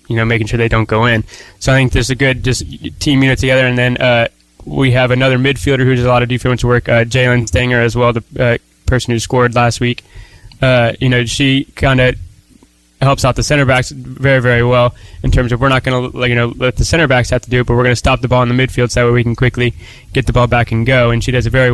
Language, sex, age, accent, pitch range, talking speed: English, male, 20-39, American, 115-125 Hz, 285 wpm